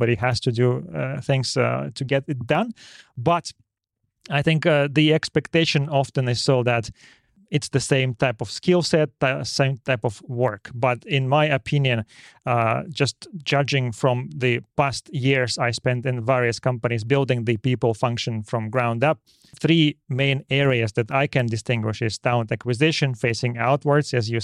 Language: Finnish